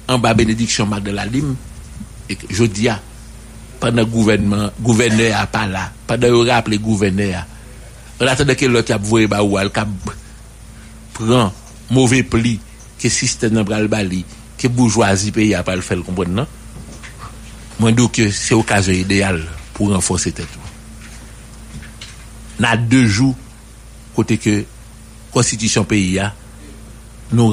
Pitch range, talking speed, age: 100-115 Hz, 115 wpm, 60-79